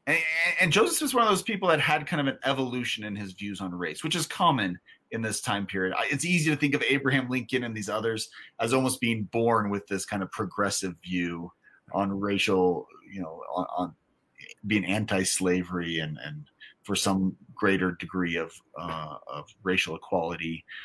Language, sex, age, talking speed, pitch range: English, male, 30-49, 185 wpm, 100-140 Hz